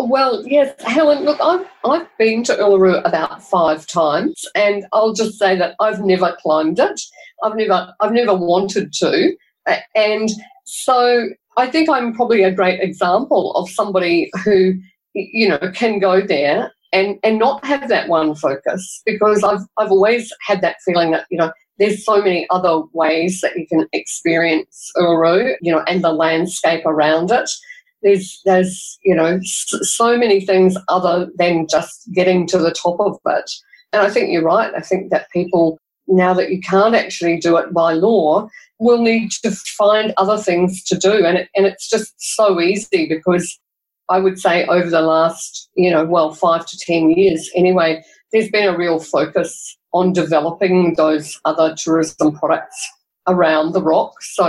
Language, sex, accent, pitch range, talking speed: English, female, Australian, 170-215 Hz, 170 wpm